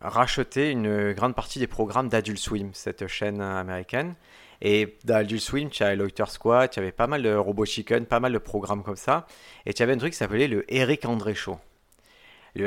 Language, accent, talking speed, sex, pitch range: French, French, 205 wpm, male, 105-125 Hz